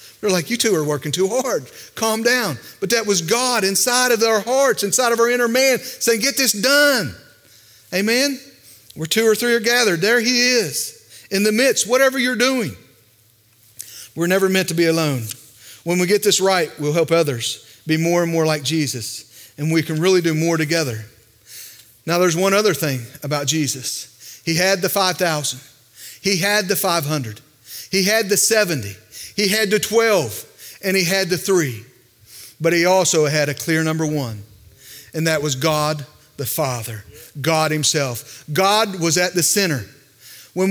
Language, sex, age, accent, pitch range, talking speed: English, male, 40-59, American, 130-215 Hz, 175 wpm